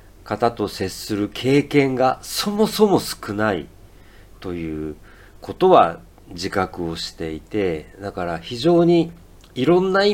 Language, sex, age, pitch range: Japanese, male, 50-69, 95-130 Hz